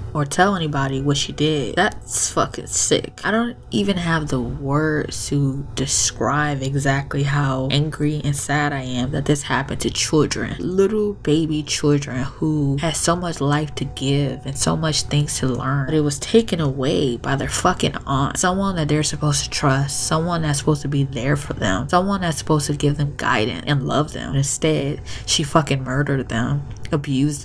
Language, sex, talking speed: English, female, 185 wpm